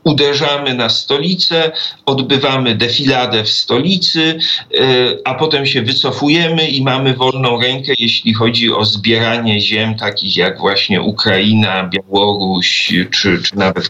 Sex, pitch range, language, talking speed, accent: male, 115-155 Hz, Polish, 120 wpm, native